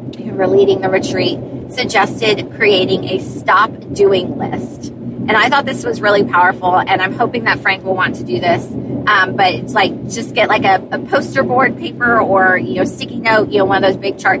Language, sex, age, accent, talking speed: English, female, 30-49, American, 210 wpm